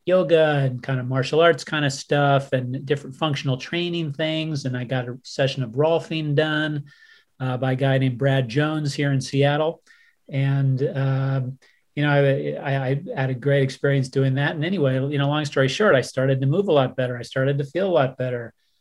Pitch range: 135-145 Hz